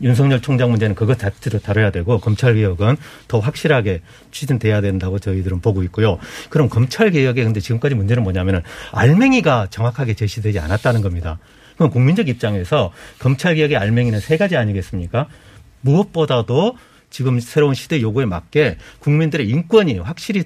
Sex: male